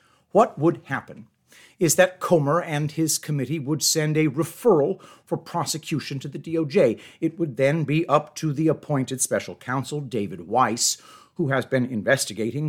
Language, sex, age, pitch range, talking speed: English, male, 50-69, 130-160 Hz, 160 wpm